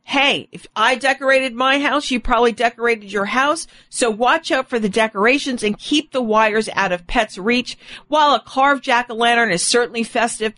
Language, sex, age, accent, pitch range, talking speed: English, female, 40-59, American, 210-260 Hz, 180 wpm